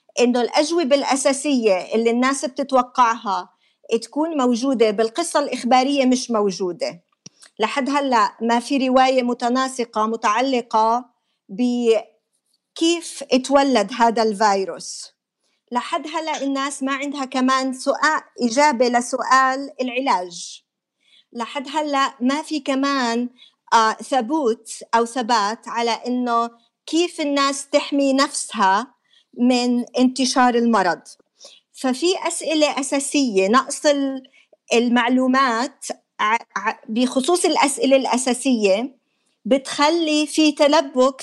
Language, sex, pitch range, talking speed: Arabic, female, 235-285 Hz, 90 wpm